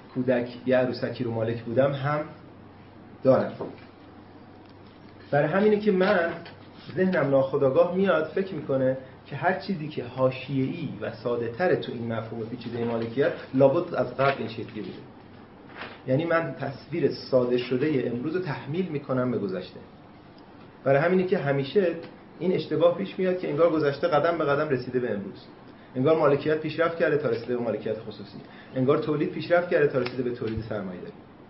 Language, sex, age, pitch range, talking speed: Persian, male, 30-49, 120-155 Hz, 150 wpm